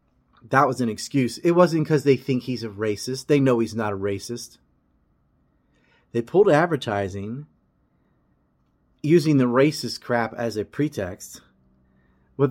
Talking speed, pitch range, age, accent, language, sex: 140 wpm, 115-150 Hz, 30-49, American, English, male